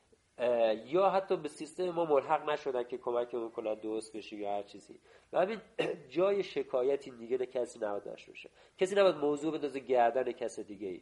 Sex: male